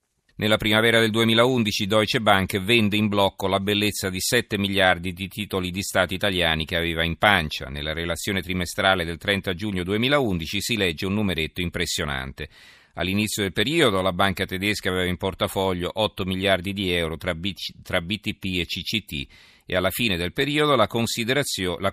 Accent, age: native, 40-59